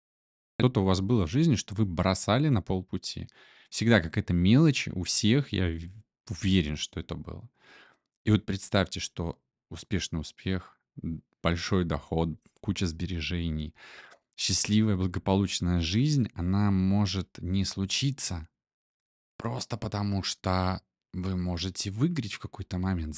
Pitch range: 95-125 Hz